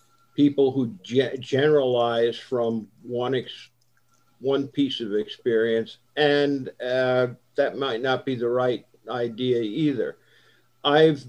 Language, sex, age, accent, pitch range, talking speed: English, male, 50-69, American, 115-135 Hz, 110 wpm